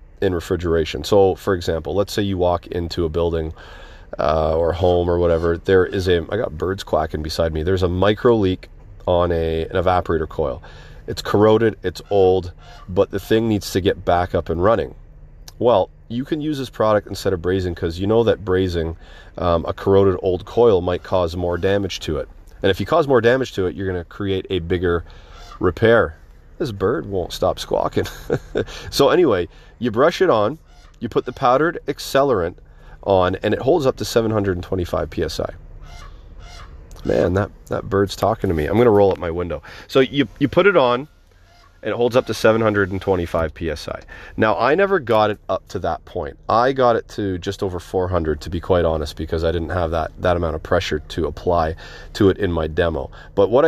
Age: 30-49